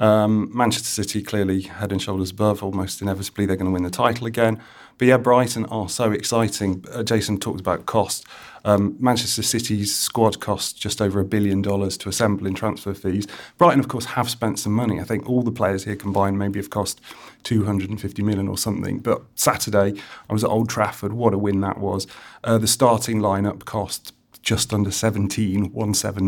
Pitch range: 100-110 Hz